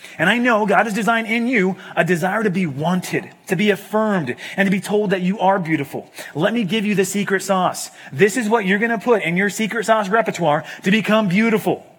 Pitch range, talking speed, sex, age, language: 185-230 Hz, 230 wpm, male, 30-49, English